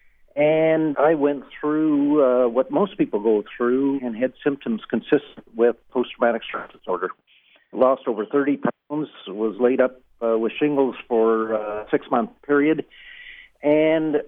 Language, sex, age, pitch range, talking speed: English, male, 50-69, 115-145 Hz, 140 wpm